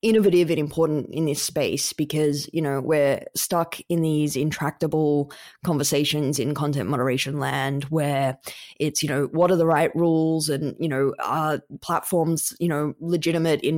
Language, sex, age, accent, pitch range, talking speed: English, female, 20-39, Australian, 145-170 Hz, 160 wpm